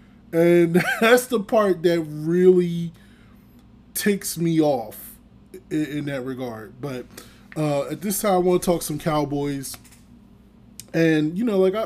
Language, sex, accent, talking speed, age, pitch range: English, male, American, 140 wpm, 20-39, 130-165 Hz